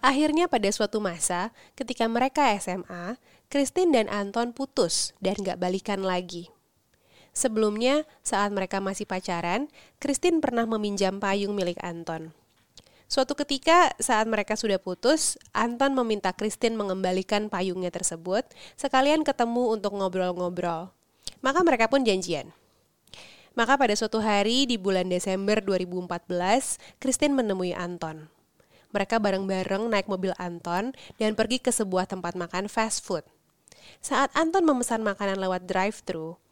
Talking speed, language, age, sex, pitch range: 125 wpm, Indonesian, 30-49, female, 185-245 Hz